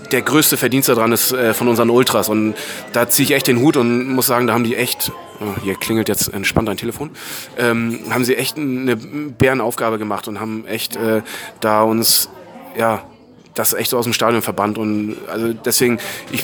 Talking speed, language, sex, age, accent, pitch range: 190 wpm, German, male, 30-49, German, 110-130 Hz